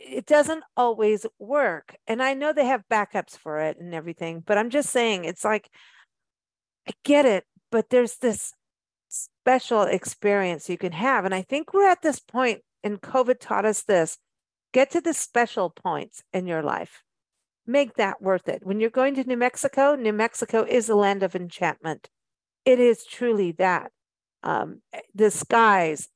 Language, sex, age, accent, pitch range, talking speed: English, female, 50-69, American, 185-245 Hz, 170 wpm